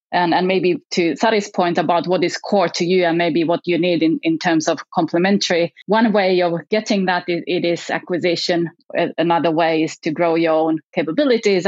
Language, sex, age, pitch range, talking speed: English, female, 30-49, 165-195 Hz, 200 wpm